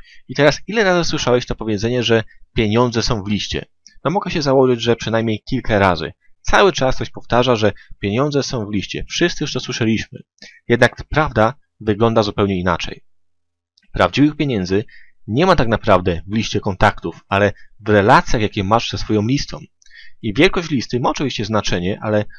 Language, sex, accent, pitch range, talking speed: Polish, male, native, 105-145 Hz, 165 wpm